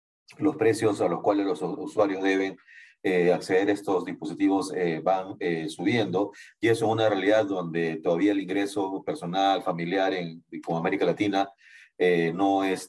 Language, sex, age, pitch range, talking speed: Spanish, male, 40-59, 95-110 Hz, 165 wpm